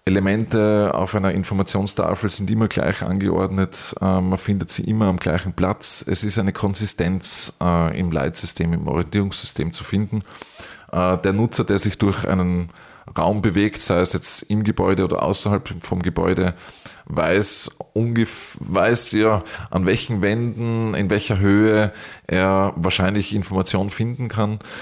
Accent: Austrian